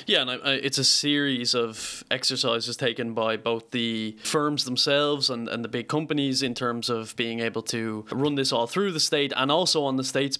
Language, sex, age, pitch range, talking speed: English, male, 20-39, 120-140 Hz, 210 wpm